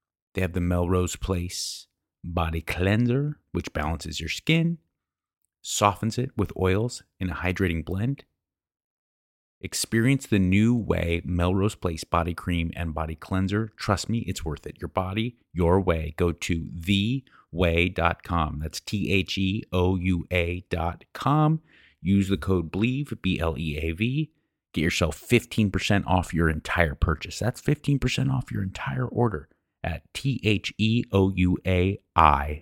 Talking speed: 120 wpm